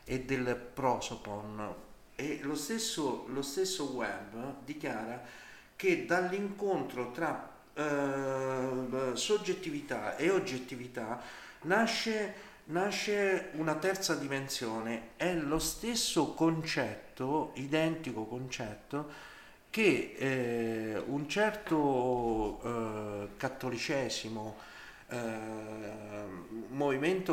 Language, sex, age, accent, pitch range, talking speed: Italian, male, 50-69, native, 120-175 Hz, 75 wpm